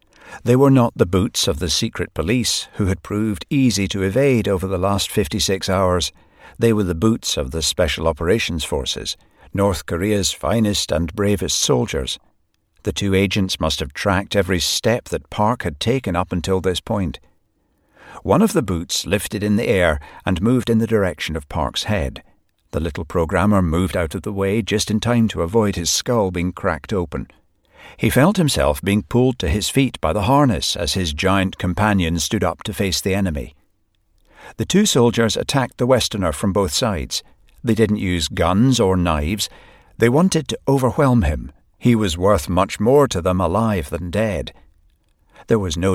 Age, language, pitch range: 60-79, English, 85-110 Hz